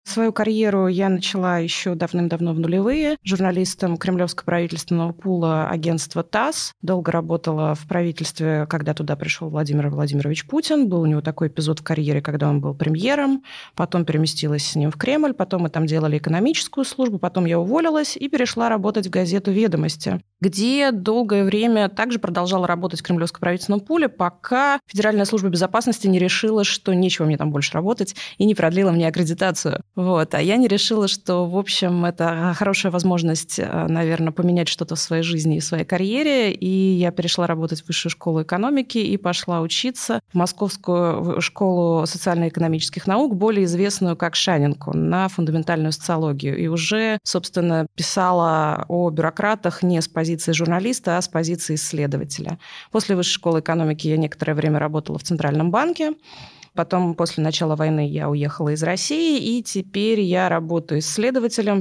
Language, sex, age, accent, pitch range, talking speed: Russian, female, 20-39, native, 165-205 Hz, 160 wpm